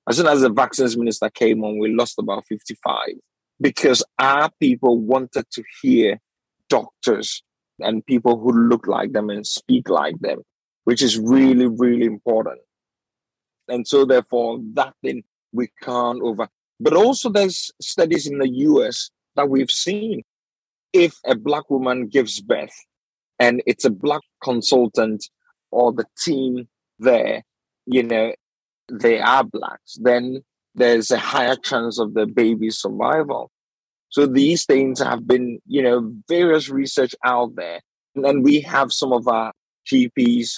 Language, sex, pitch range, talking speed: English, male, 115-140 Hz, 150 wpm